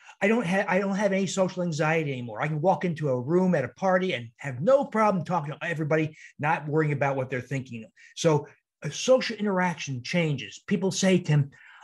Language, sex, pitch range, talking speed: English, male, 130-175 Hz, 200 wpm